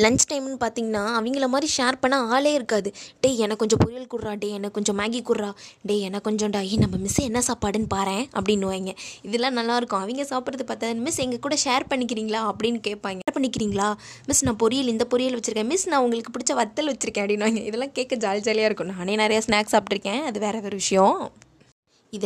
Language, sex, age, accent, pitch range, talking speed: Tamil, female, 20-39, native, 210-265 Hz, 190 wpm